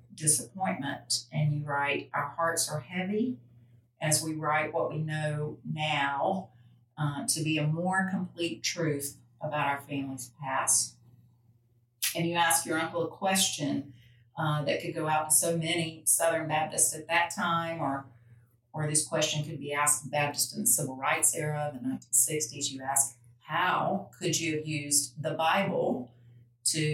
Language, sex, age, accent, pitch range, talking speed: English, female, 40-59, American, 125-155 Hz, 160 wpm